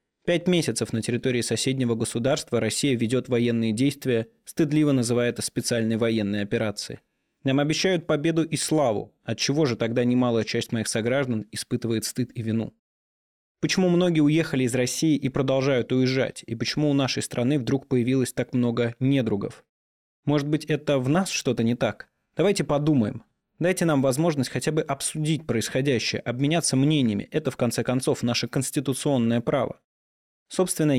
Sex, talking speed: male, 150 wpm